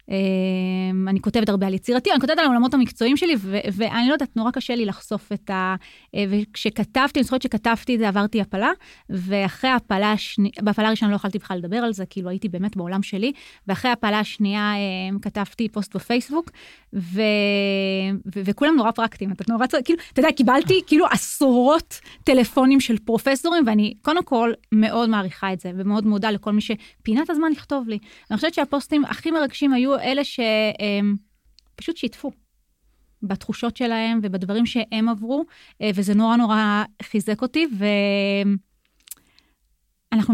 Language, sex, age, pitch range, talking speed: Hebrew, female, 20-39, 200-260 Hz, 145 wpm